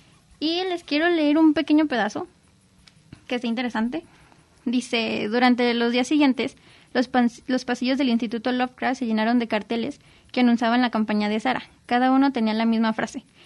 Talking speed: 170 wpm